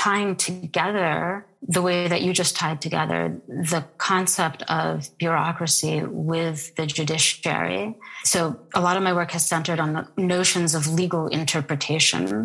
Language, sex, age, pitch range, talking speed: English, female, 30-49, 155-180 Hz, 145 wpm